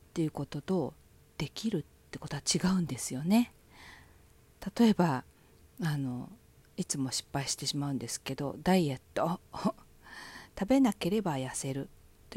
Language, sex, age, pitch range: Japanese, female, 40-59, 135-190 Hz